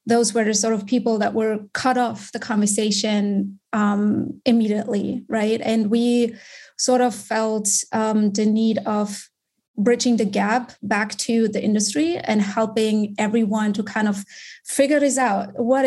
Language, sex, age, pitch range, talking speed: English, female, 30-49, 210-235 Hz, 155 wpm